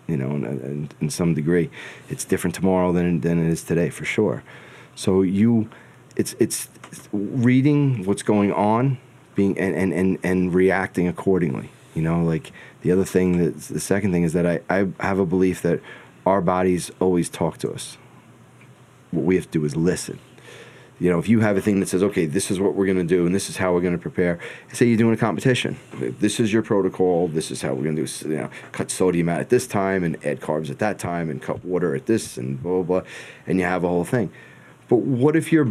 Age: 30-49